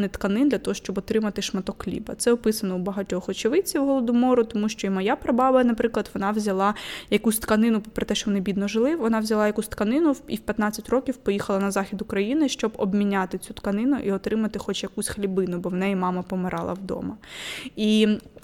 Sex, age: female, 20-39